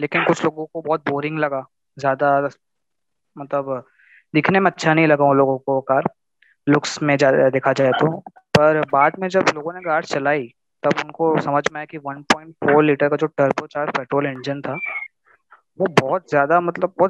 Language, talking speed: Hindi, 180 wpm